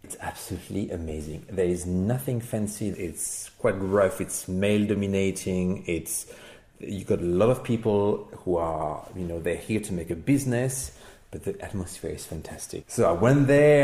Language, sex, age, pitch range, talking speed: English, male, 30-49, 90-115 Hz, 170 wpm